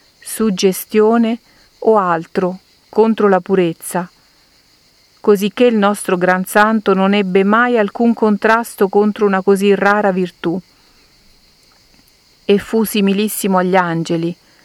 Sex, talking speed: female, 105 wpm